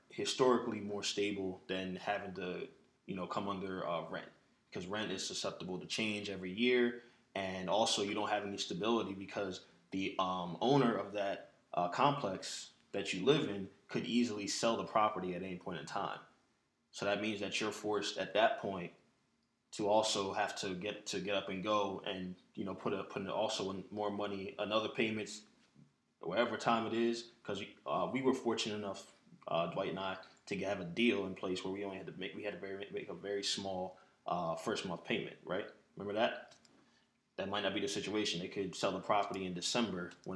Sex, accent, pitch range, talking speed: male, American, 95-110 Hz, 200 wpm